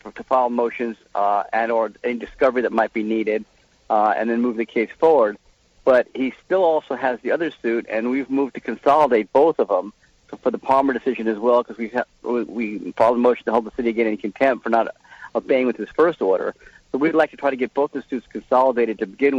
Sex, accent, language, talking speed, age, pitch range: male, American, English, 230 wpm, 50-69, 110-130 Hz